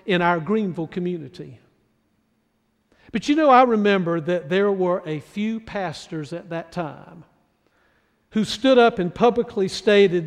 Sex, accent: male, American